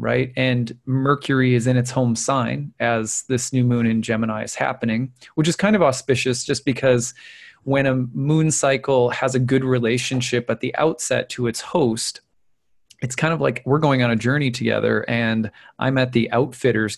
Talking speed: 185 wpm